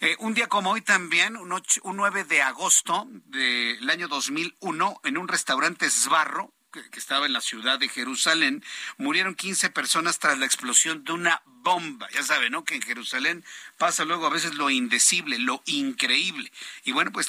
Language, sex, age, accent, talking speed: Spanish, male, 50-69, Mexican, 185 wpm